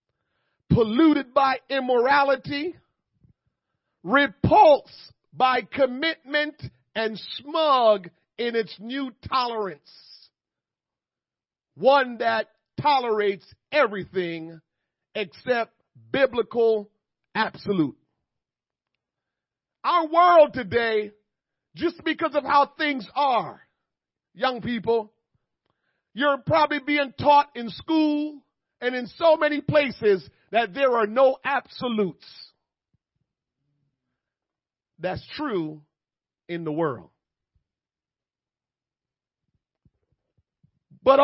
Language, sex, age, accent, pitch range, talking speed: English, male, 40-59, American, 210-300 Hz, 75 wpm